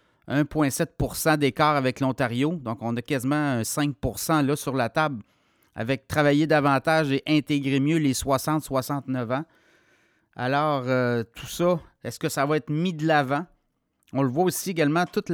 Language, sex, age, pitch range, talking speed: French, male, 30-49, 130-160 Hz, 160 wpm